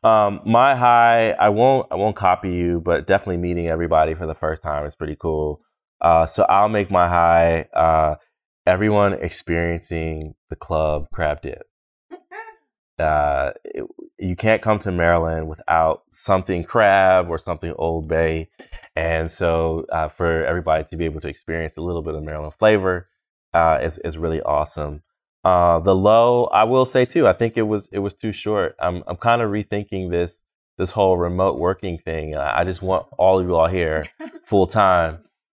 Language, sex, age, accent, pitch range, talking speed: English, male, 20-39, American, 80-95 Hz, 175 wpm